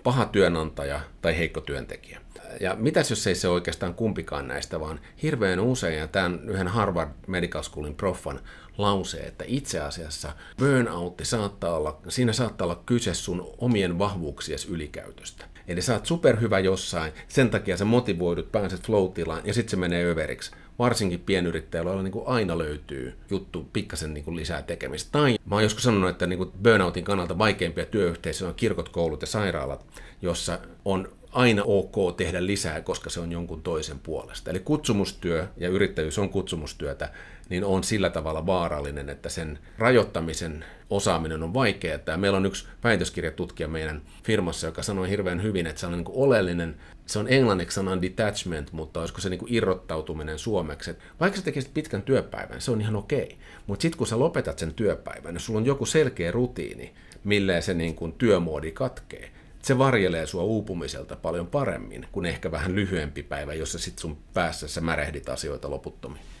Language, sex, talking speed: Finnish, male, 160 wpm